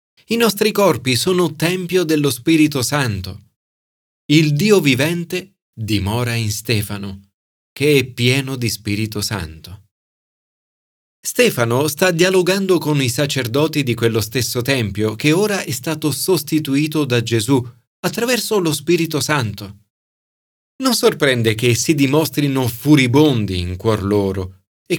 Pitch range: 105-160 Hz